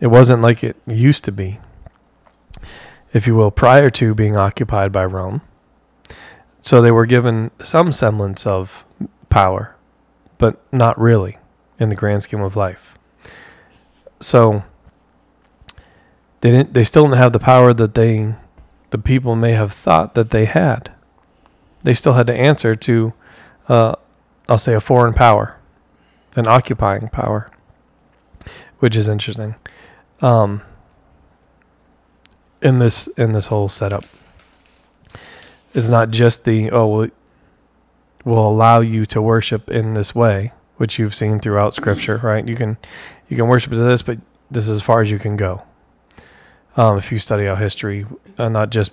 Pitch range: 100-120 Hz